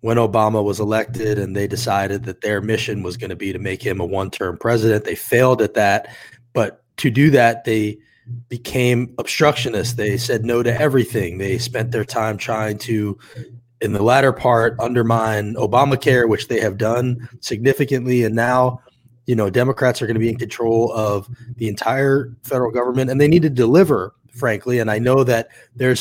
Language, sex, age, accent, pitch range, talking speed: English, male, 20-39, American, 110-125 Hz, 185 wpm